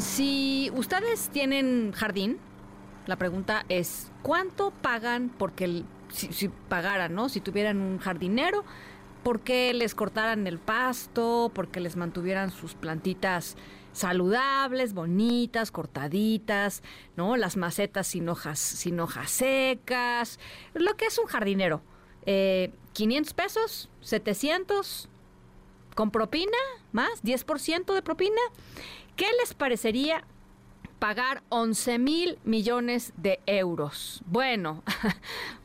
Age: 40-59